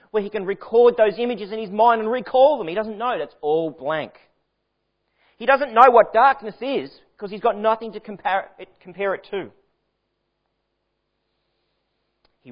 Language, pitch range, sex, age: English, 105-170 Hz, male, 40-59